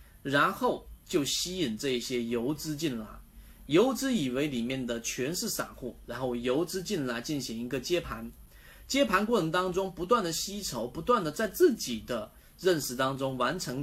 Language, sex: Chinese, male